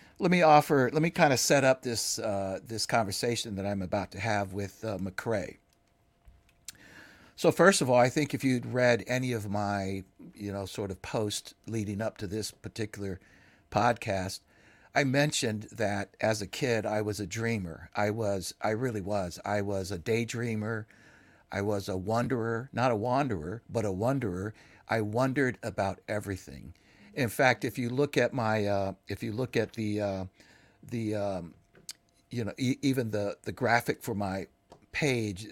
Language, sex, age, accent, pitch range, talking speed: English, male, 60-79, American, 100-125 Hz, 170 wpm